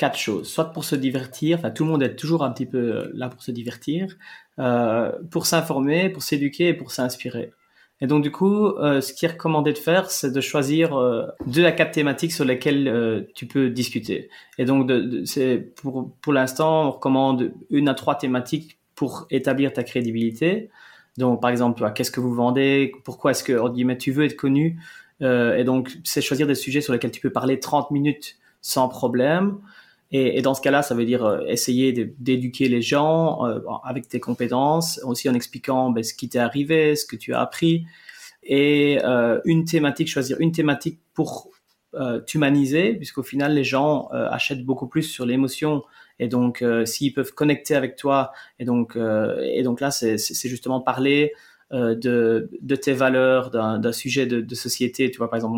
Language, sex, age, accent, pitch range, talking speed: French, male, 30-49, French, 125-150 Hz, 190 wpm